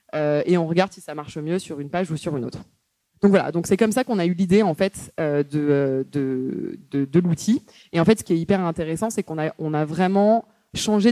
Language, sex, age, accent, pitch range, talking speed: French, female, 20-39, French, 155-200 Hz, 260 wpm